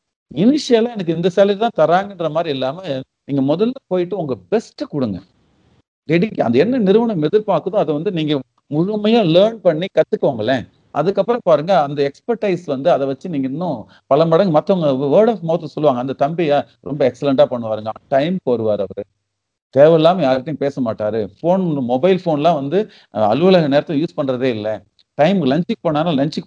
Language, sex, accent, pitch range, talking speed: Tamil, male, native, 135-185 Hz, 150 wpm